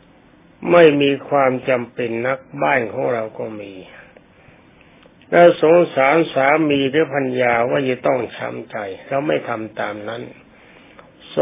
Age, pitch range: 60-79, 125-155 Hz